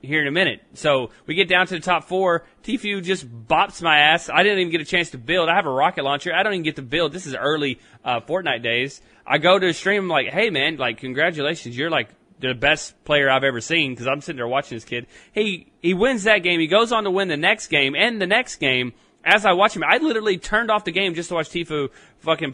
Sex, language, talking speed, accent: male, English, 265 wpm, American